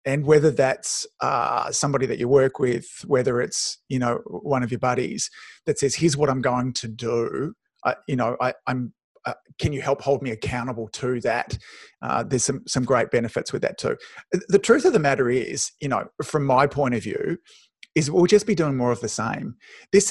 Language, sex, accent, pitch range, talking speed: English, male, Australian, 125-175 Hz, 210 wpm